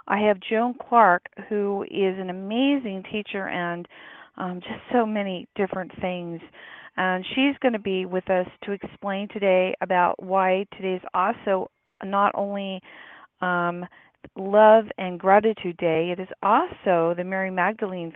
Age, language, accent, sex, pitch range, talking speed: 40-59, English, American, female, 180-220 Hz, 145 wpm